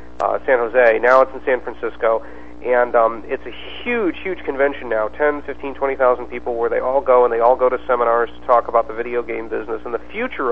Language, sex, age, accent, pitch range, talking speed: English, male, 40-59, American, 115-145 Hz, 230 wpm